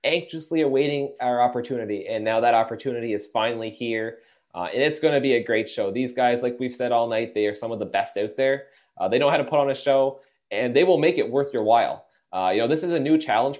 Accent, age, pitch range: American, 20-39, 120-145 Hz